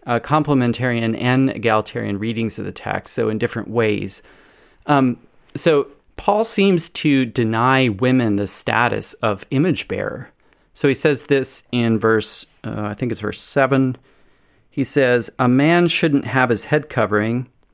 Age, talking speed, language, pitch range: 40-59, 150 wpm, English, 110-135 Hz